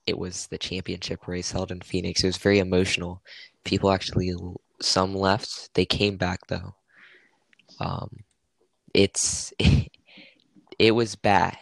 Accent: American